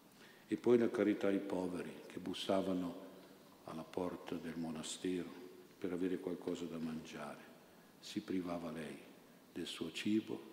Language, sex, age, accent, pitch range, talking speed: Italian, male, 50-69, native, 85-105 Hz, 130 wpm